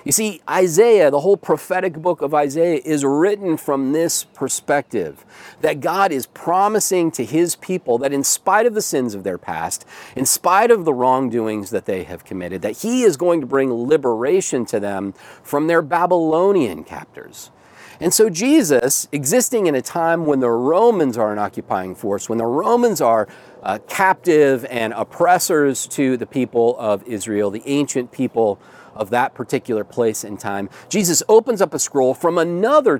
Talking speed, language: 175 wpm, English